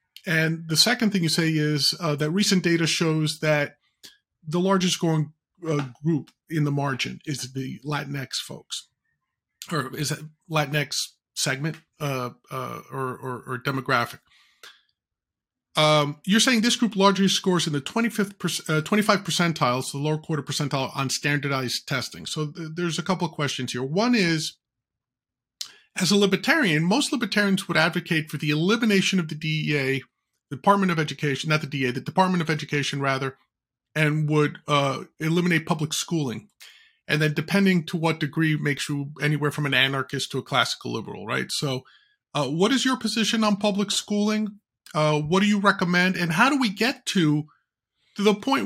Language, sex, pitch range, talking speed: English, male, 150-190 Hz, 170 wpm